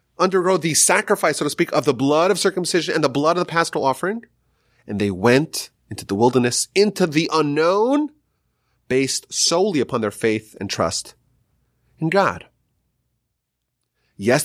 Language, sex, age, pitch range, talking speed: English, male, 30-49, 100-140 Hz, 155 wpm